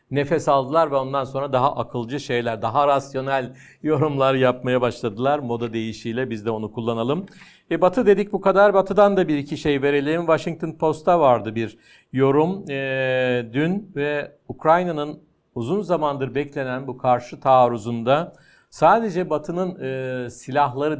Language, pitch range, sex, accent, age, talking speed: Turkish, 125-165 Hz, male, native, 50-69, 140 wpm